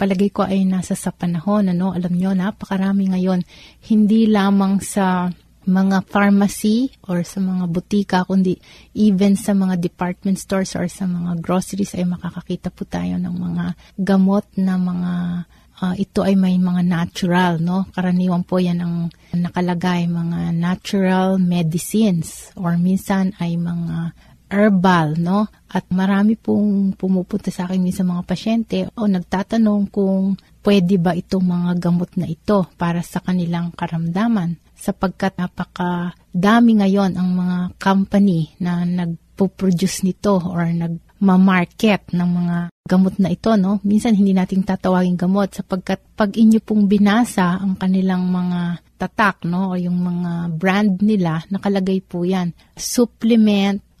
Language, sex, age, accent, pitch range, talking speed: Filipino, female, 30-49, native, 180-200 Hz, 140 wpm